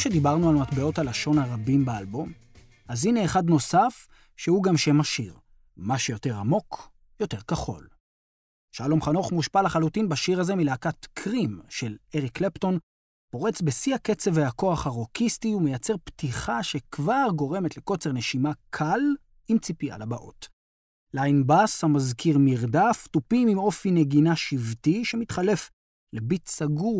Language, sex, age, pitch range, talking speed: Hebrew, male, 30-49, 125-185 Hz, 130 wpm